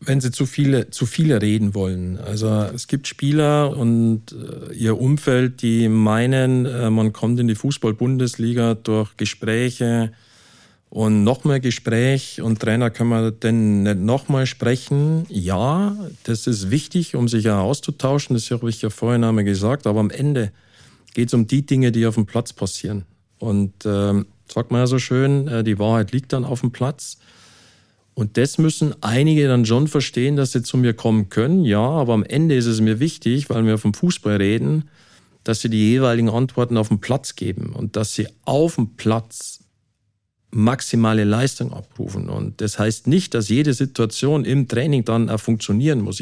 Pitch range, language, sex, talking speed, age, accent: 110-135 Hz, German, male, 180 wpm, 50-69, German